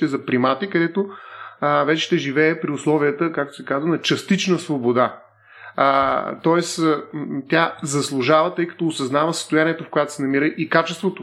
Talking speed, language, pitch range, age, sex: 150 wpm, Bulgarian, 145-180 Hz, 30-49, male